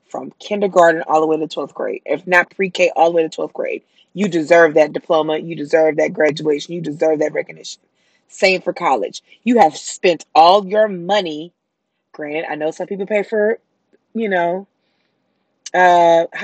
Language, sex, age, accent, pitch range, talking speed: English, female, 20-39, American, 165-210 Hz, 175 wpm